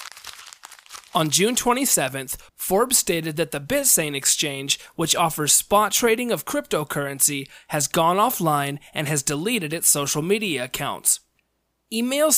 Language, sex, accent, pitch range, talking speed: English, male, American, 150-210 Hz, 125 wpm